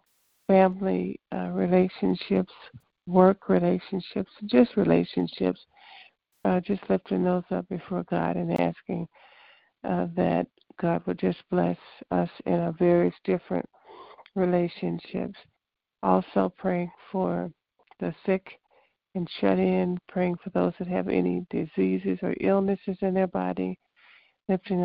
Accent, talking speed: American, 120 wpm